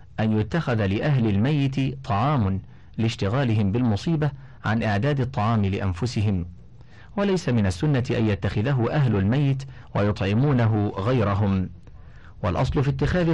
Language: Arabic